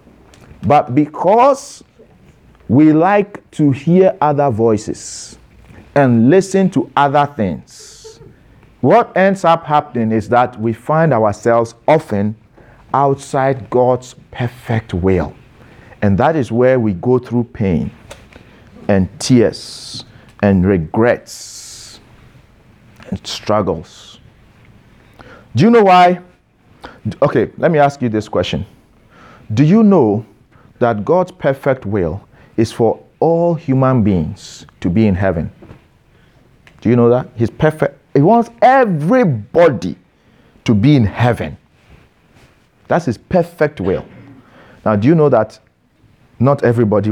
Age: 50-69